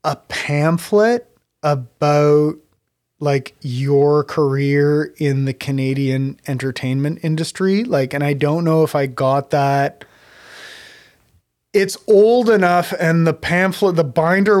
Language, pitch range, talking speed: English, 135-165 Hz, 115 wpm